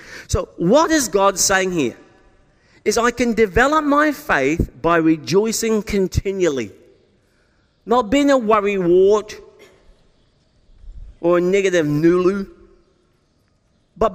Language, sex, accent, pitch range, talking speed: English, male, British, 160-255 Hz, 100 wpm